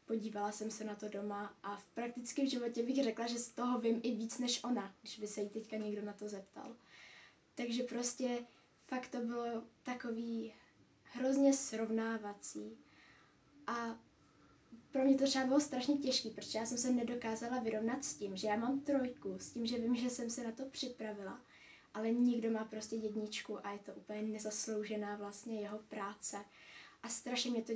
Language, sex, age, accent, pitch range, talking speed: Czech, female, 20-39, native, 215-245 Hz, 180 wpm